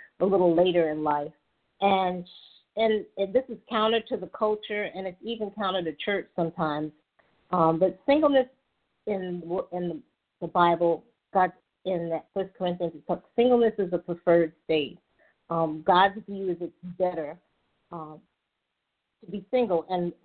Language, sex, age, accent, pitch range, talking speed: English, female, 50-69, American, 170-215 Hz, 140 wpm